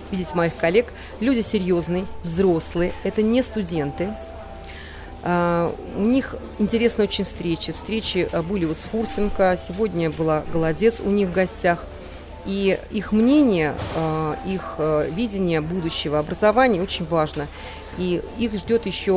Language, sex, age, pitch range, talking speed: Russian, female, 30-49, 165-210 Hz, 120 wpm